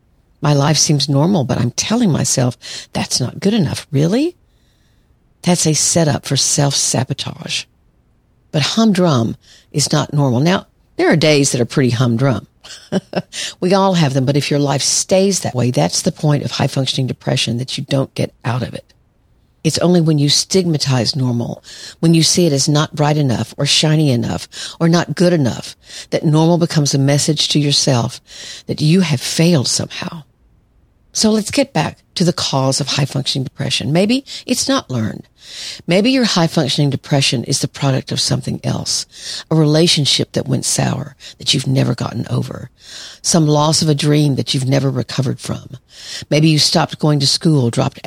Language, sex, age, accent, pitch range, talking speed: English, female, 50-69, American, 135-165 Hz, 175 wpm